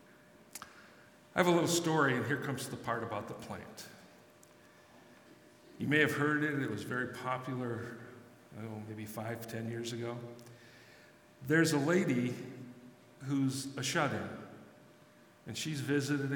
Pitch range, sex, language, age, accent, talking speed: 115-145 Hz, male, English, 50-69, American, 145 wpm